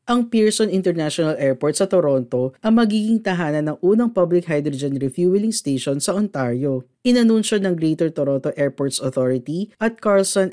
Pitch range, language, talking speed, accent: 140-200 Hz, Filipino, 140 wpm, native